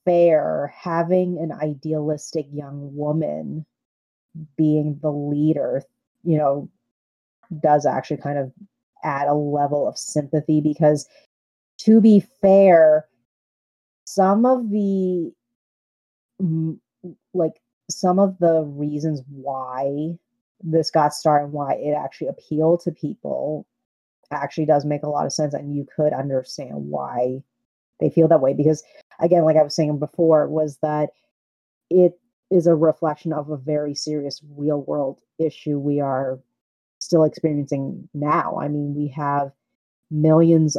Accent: American